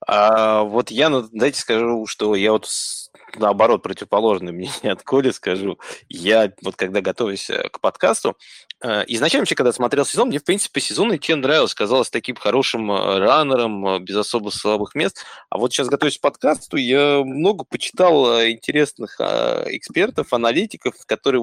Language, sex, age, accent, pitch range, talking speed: Russian, male, 20-39, native, 110-145 Hz, 155 wpm